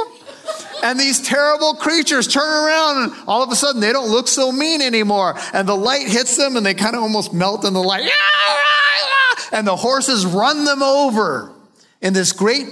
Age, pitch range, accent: 40-59, 150-225 Hz, American